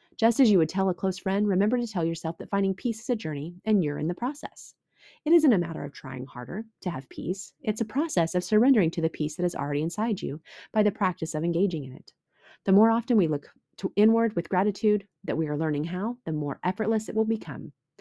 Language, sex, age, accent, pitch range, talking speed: English, female, 30-49, American, 160-220 Hz, 240 wpm